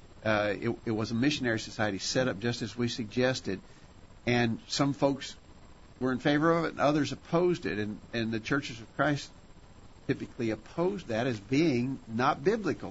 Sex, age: male, 50-69